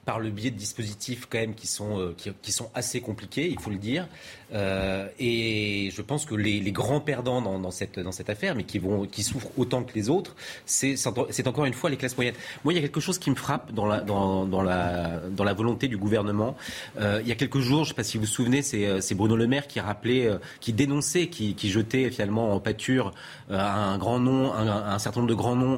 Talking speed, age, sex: 255 wpm, 30-49, male